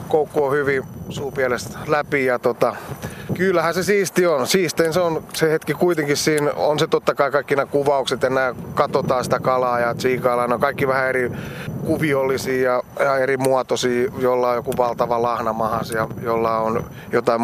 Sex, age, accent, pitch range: male, 30-49, native, 120-150 Hz